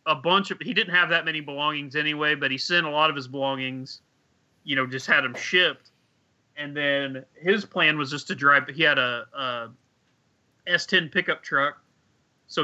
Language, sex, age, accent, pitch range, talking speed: English, male, 30-49, American, 130-165 Hz, 190 wpm